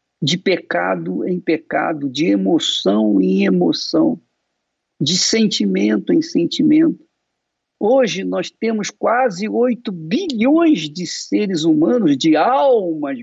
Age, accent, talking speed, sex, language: 50-69, Brazilian, 105 wpm, male, Portuguese